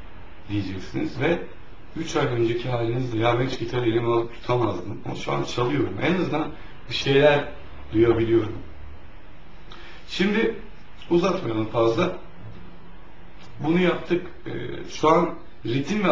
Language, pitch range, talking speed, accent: Turkish, 100-145 Hz, 110 wpm, native